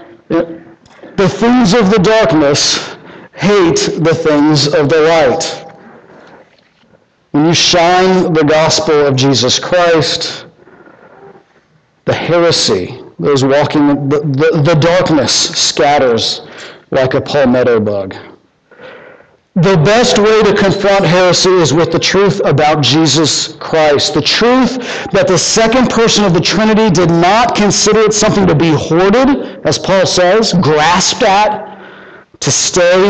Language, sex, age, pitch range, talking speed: English, male, 50-69, 145-190 Hz, 125 wpm